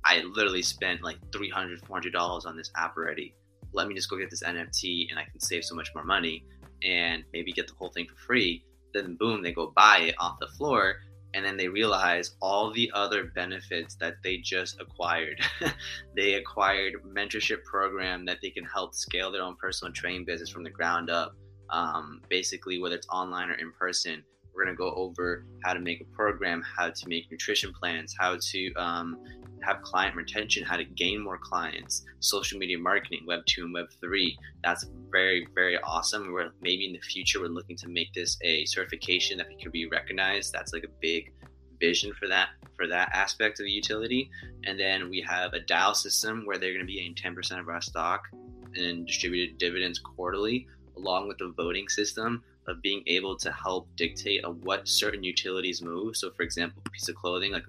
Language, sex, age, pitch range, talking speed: English, male, 20-39, 85-100 Hz, 205 wpm